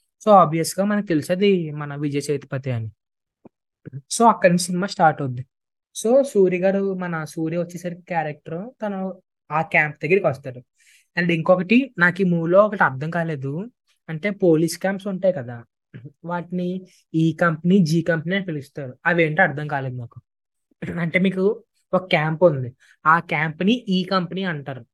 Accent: native